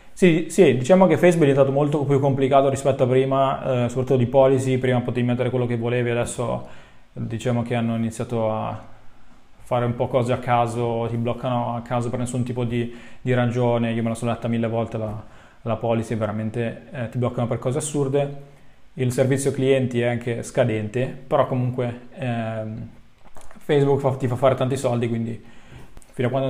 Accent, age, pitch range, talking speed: native, 20-39, 115-130 Hz, 180 wpm